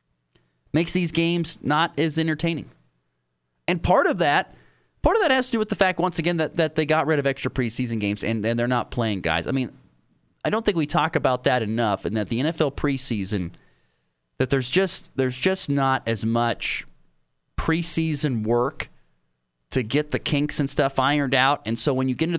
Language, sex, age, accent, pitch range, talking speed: English, male, 30-49, American, 95-150 Hz, 200 wpm